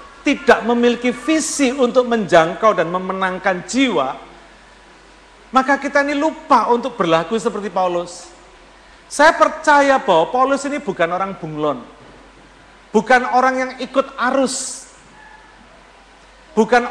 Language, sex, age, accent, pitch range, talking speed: Indonesian, male, 50-69, native, 210-260 Hz, 105 wpm